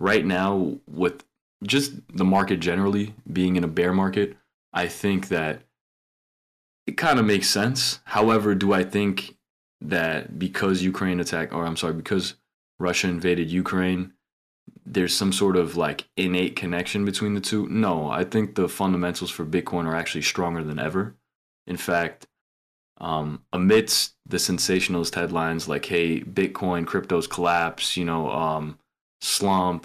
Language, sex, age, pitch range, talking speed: English, male, 20-39, 85-100 Hz, 145 wpm